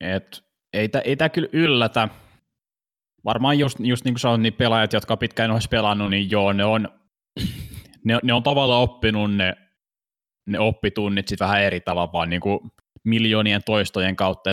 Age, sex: 20-39, male